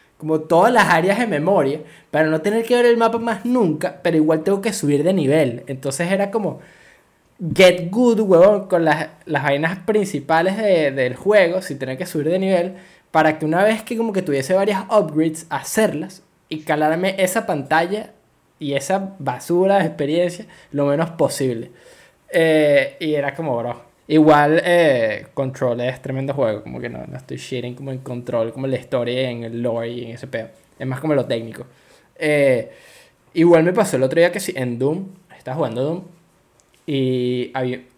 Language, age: Spanish, 20-39